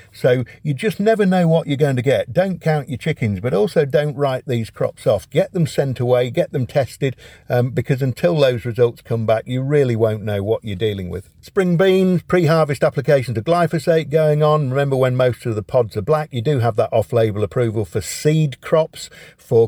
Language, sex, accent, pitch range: English, male, British, 110-145 Hz